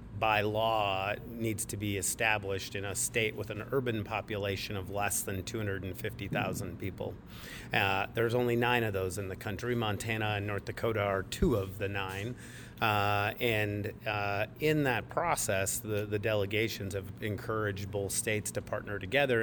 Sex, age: male, 30-49